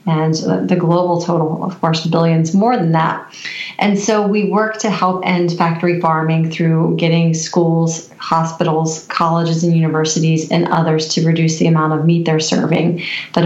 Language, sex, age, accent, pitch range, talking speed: English, female, 30-49, American, 165-185 Hz, 165 wpm